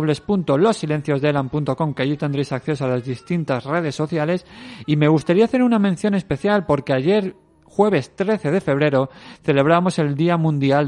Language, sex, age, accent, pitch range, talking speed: Spanish, male, 40-59, Spanish, 125-160 Hz, 150 wpm